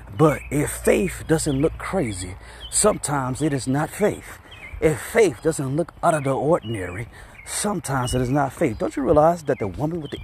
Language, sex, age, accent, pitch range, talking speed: English, male, 30-49, American, 115-155 Hz, 190 wpm